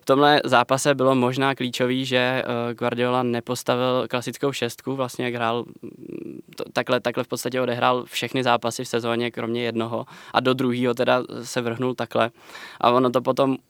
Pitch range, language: 120-125 Hz, Czech